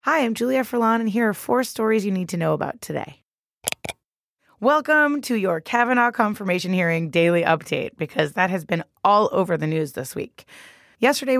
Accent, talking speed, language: American, 180 wpm, English